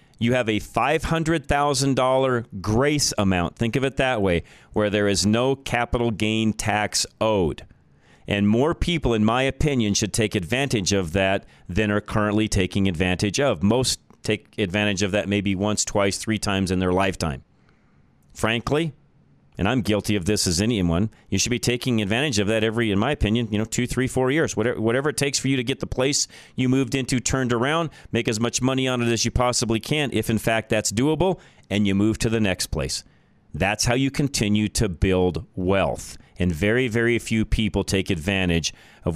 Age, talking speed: 40-59, 190 wpm